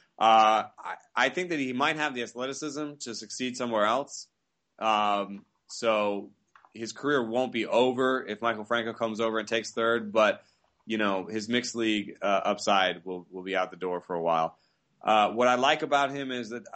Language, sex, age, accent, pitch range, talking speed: English, male, 20-39, American, 100-115 Hz, 195 wpm